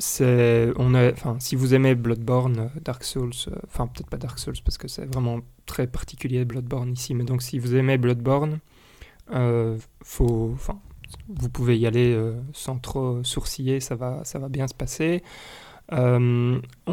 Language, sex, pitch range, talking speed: French, male, 120-135 Hz, 175 wpm